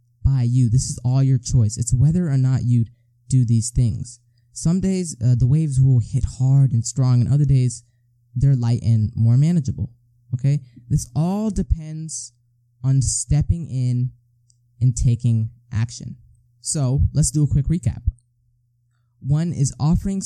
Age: 10-29